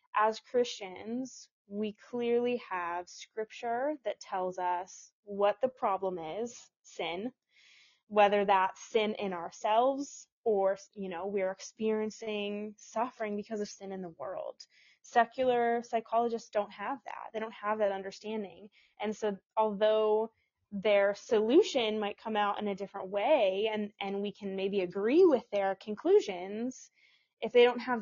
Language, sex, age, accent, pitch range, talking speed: English, female, 20-39, American, 190-220 Hz, 140 wpm